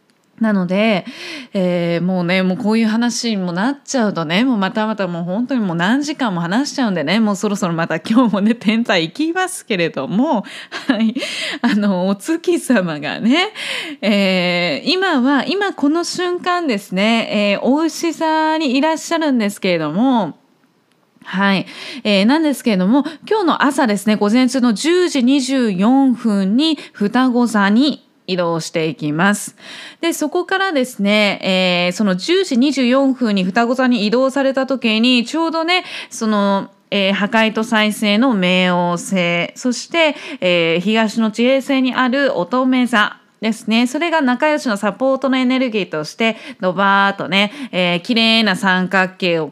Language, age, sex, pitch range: Japanese, 20-39, female, 190-270 Hz